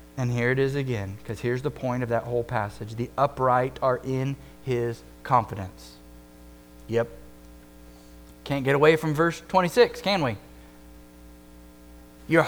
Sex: male